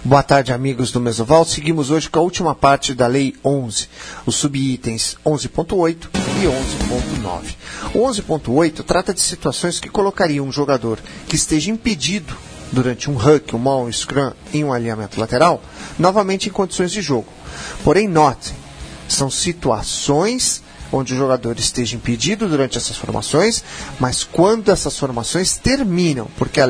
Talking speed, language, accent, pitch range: 145 wpm, Portuguese, Brazilian, 125-180 Hz